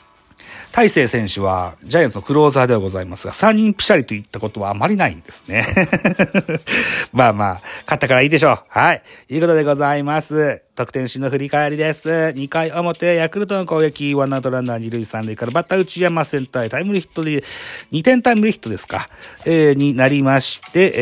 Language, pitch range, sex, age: Japanese, 120-180 Hz, male, 40-59